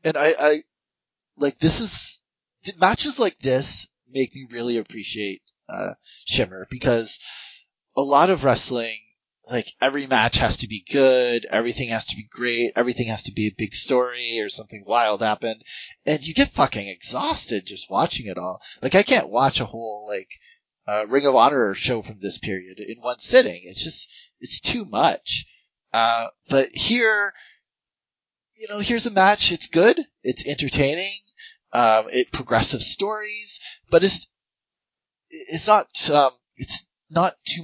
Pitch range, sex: 115-160 Hz, male